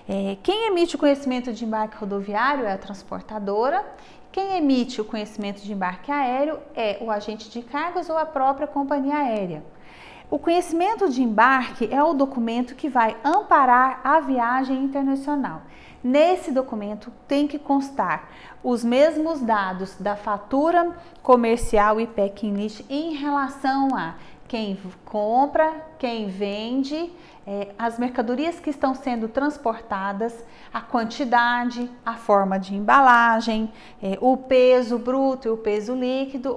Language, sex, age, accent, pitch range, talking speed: Portuguese, female, 30-49, Brazilian, 215-275 Hz, 130 wpm